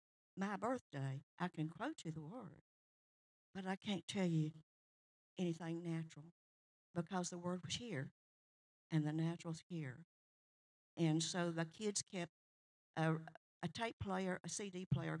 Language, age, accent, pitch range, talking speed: English, 60-79, American, 160-185 Hz, 140 wpm